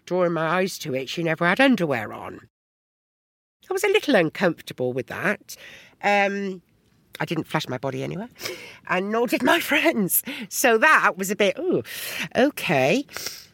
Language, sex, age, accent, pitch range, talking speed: English, female, 60-79, British, 150-250 Hz, 160 wpm